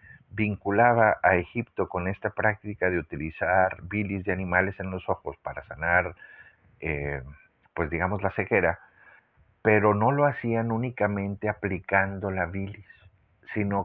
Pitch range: 90-110 Hz